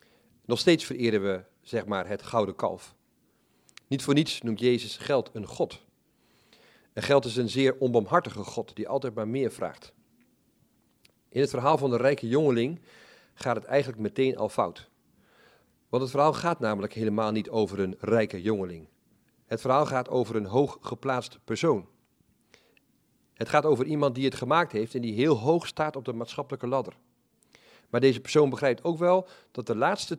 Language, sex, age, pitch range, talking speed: Dutch, male, 40-59, 115-140 Hz, 170 wpm